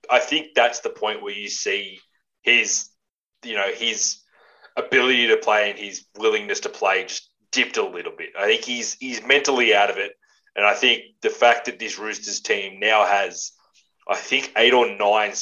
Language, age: English, 20-39